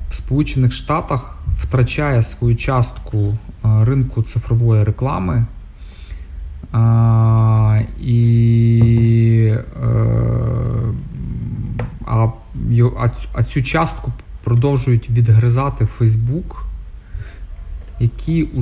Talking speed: 60 wpm